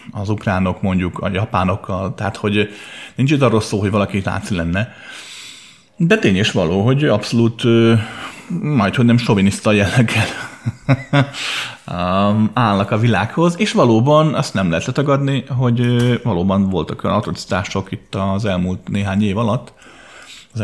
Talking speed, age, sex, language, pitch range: 130 wpm, 30-49, male, Hungarian, 95-120 Hz